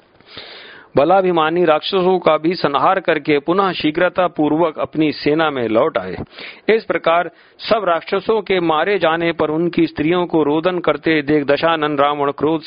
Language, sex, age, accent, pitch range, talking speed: Hindi, male, 50-69, native, 145-180 Hz, 135 wpm